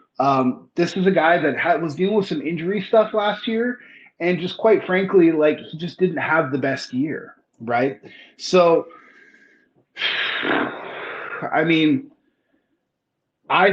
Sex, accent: male, American